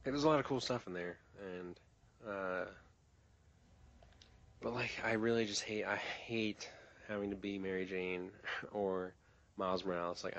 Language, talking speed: English, 155 wpm